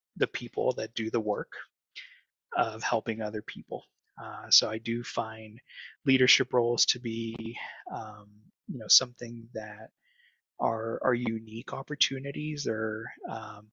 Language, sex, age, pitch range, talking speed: English, male, 20-39, 115-135 Hz, 130 wpm